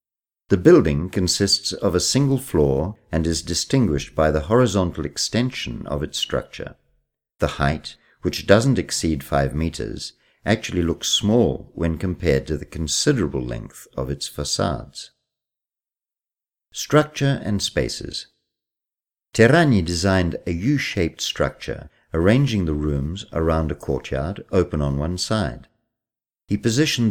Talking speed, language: 125 wpm, Italian